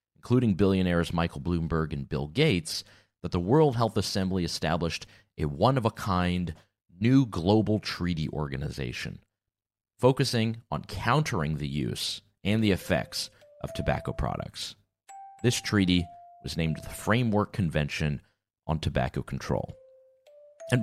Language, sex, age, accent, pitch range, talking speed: English, male, 30-49, American, 85-115 Hz, 120 wpm